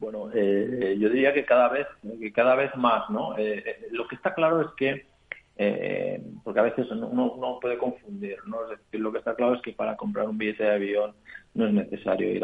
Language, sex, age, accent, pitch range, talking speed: Spanish, male, 40-59, Spanish, 105-145 Hz, 230 wpm